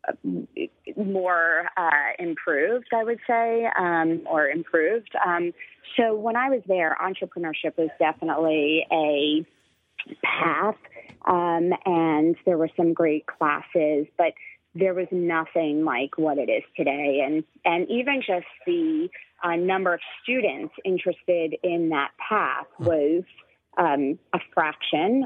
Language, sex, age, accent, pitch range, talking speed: English, female, 30-49, American, 160-205 Hz, 125 wpm